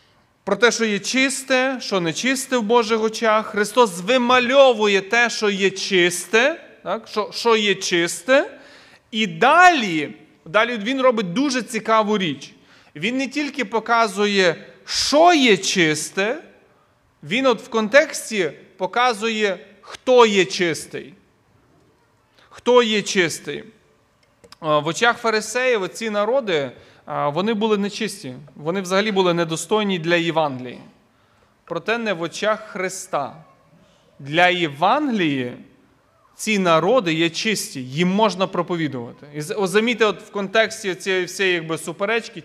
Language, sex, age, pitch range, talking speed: Ukrainian, male, 30-49, 170-230 Hz, 120 wpm